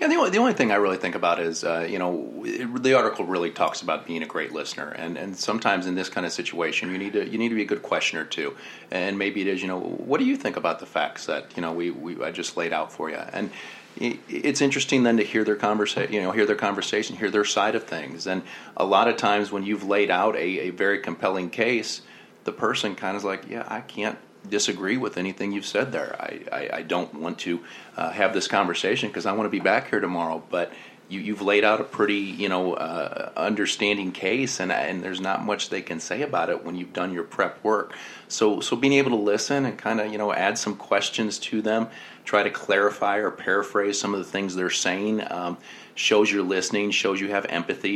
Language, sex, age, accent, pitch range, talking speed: English, male, 30-49, American, 95-110 Hz, 245 wpm